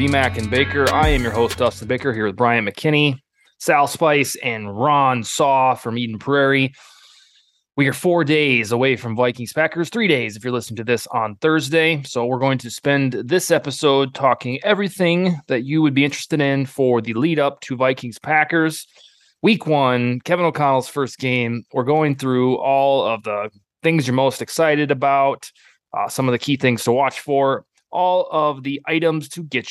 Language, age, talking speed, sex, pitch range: English, 20-39, 185 wpm, male, 125-150 Hz